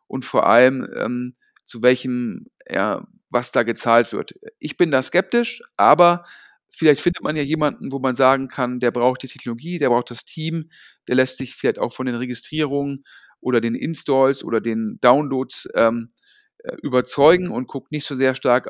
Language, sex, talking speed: German, male, 175 wpm